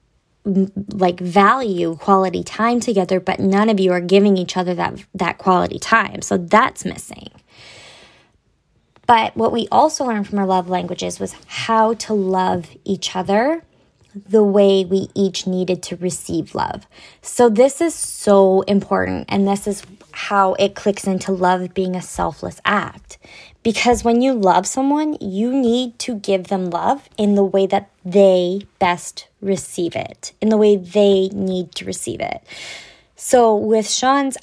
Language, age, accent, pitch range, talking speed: English, 20-39, American, 185-220 Hz, 155 wpm